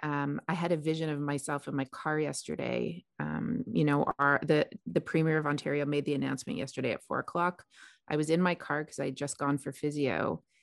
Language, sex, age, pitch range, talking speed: English, female, 30-49, 145-170 Hz, 220 wpm